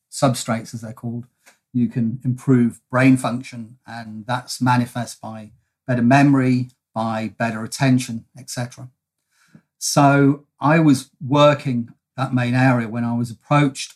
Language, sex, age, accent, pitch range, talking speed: English, male, 40-59, British, 120-135 Hz, 130 wpm